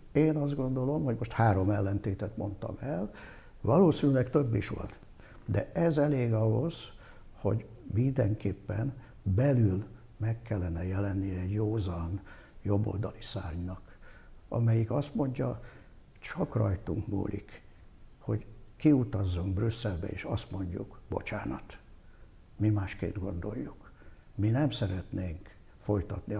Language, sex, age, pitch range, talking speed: Hungarian, male, 60-79, 95-115 Hz, 105 wpm